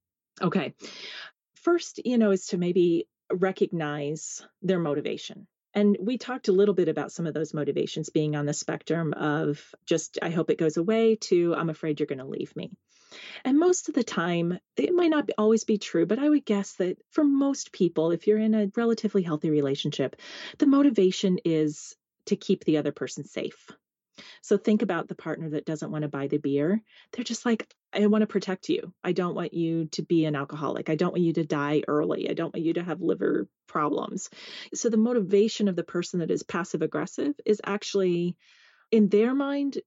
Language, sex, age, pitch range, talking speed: English, female, 30-49, 155-210 Hz, 200 wpm